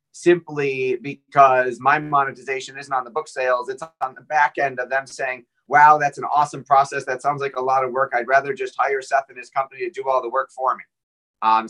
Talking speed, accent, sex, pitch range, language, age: 230 wpm, American, male, 135-155 Hz, English, 30-49